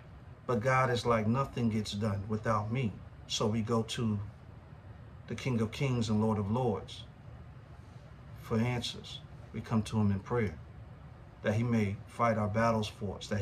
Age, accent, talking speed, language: 50-69, American, 170 wpm, English